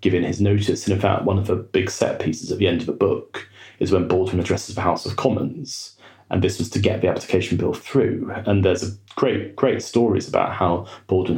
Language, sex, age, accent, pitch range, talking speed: English, male, 30-49, British, 95-115 Hz, 230 wpm